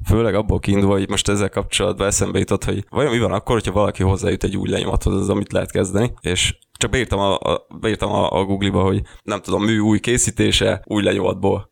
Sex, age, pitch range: male, 20-39, 95-105 Hz